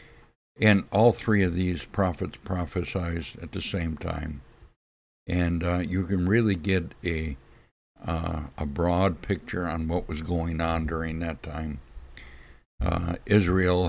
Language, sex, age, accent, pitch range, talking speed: English, male, 60-79, American, 80-95 Hz, 135 wpm